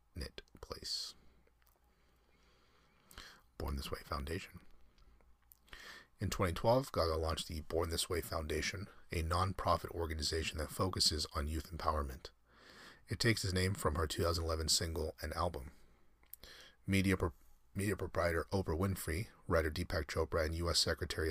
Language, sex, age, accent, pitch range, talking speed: English, male, 30-49, American, 75-90 Hz, 125 wpm